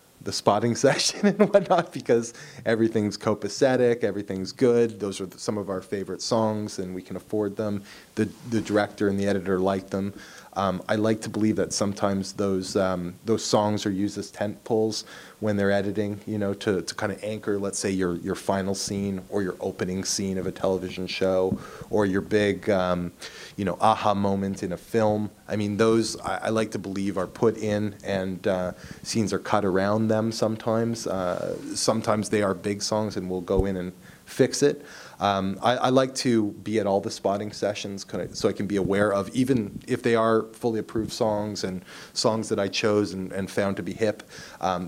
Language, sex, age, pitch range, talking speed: English, male, 30-49, 95-110 Hz, 205 wpm